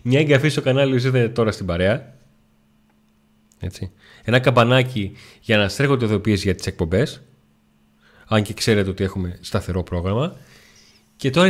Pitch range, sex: 100-120 Hz, male